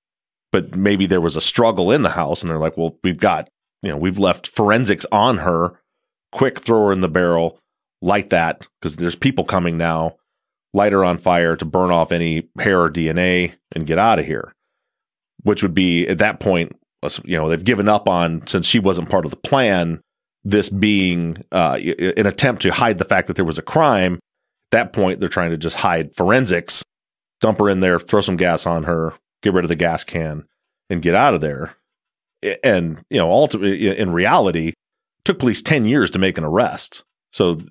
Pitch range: 85-105 Hz